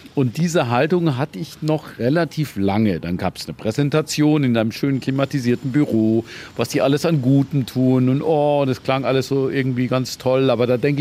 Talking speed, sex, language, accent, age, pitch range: 195 wpm, male, German, German, 40-59, 115-150 Hz